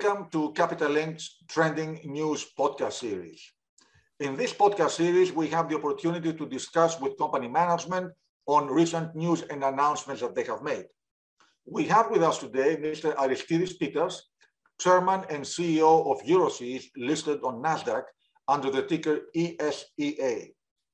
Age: 50-69